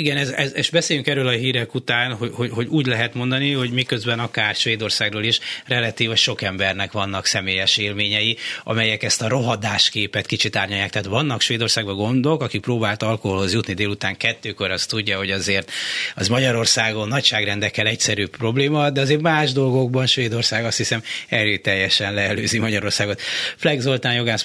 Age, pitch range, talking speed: 30-49, 105-120 Hz, 155 wpm